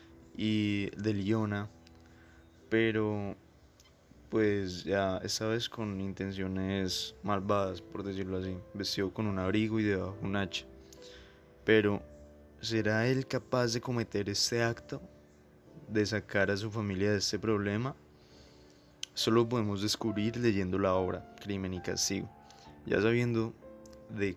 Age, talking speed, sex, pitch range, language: 20-39, 125 wpm, male, 95-110 Hz, Spanish